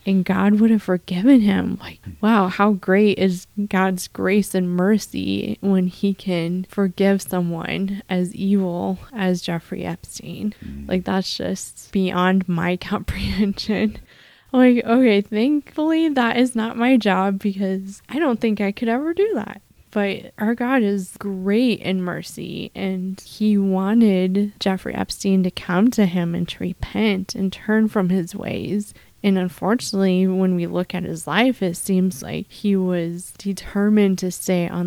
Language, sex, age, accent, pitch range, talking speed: English, female, 20-39, American, 180-205 Hz, 155 wpm